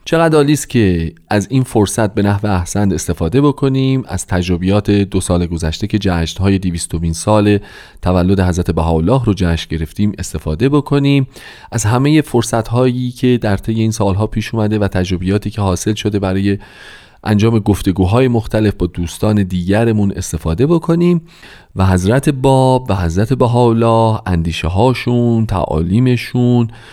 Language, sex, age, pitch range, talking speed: Persian, male, 40-59, 95-125 Hz, 140 wpm